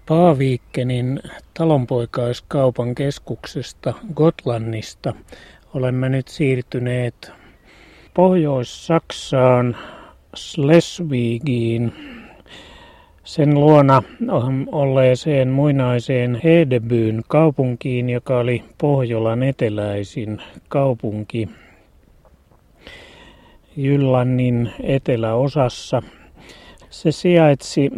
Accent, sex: native, male